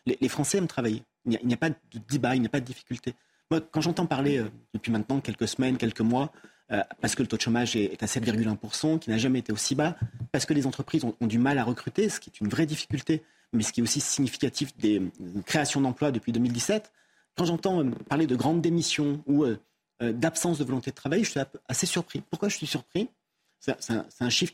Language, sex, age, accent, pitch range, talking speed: French, male, 40-59, French, 125-170 Hz, 250 wpm